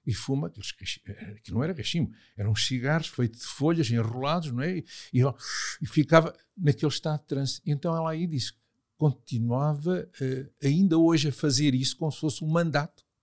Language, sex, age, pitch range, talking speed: Portuguese, male, 60-79, 110-160 Hz, 170 wpm